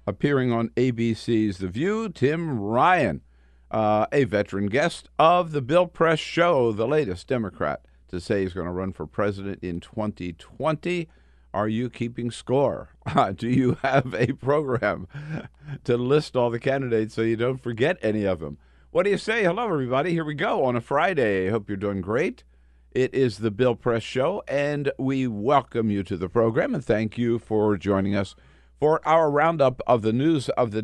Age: 50-69